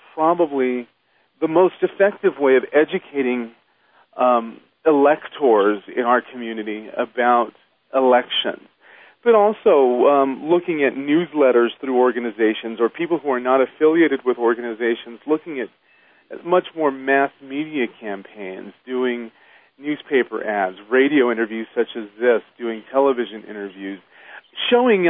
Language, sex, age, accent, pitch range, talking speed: English, male, 40-59, American, 120-170 Hz, 120 wpm